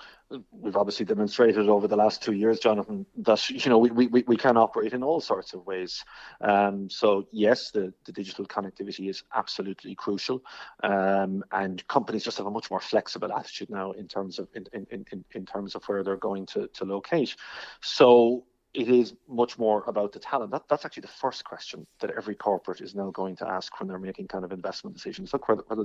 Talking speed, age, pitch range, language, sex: 205 wpm, 30-49, 100-120 Hz, English, male